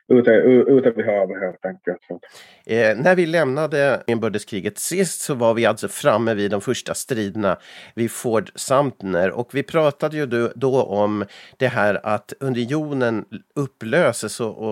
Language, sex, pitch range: Swedish, male, 110-140 Hz